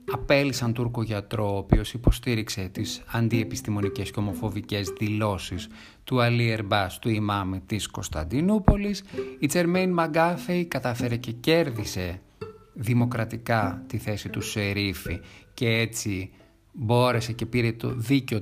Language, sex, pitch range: Greek, male, 105-130 Hz